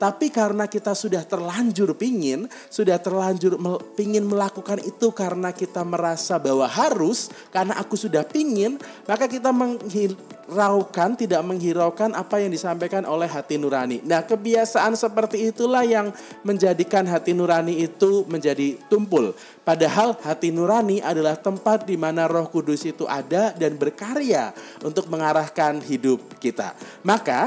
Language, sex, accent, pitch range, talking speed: Indonesian, male, native, 150-210 Hz, 130 wpm